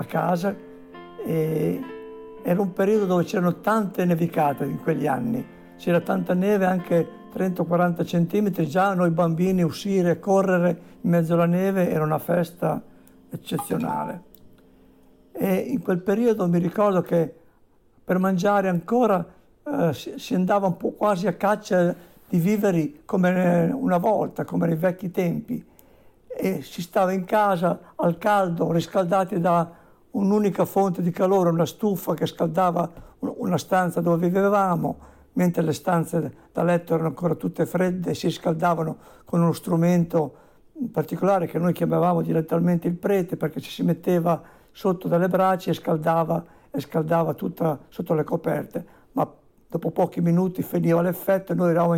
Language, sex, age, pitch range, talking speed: Italian, male, 60-79, 165-190 Hz, 145 wpm